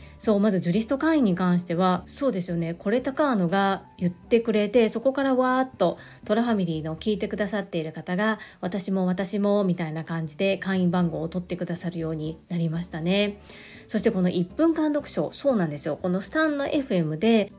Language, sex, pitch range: Japanese, female, 180-245 Hz